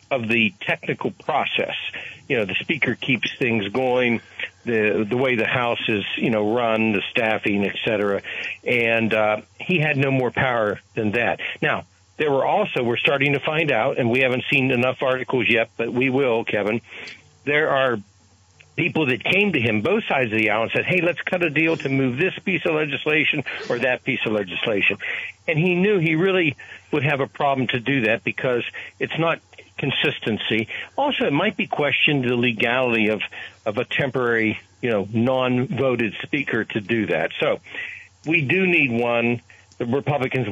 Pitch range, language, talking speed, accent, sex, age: 110-140 Hz, English, 185 wpm, American, male, 60-79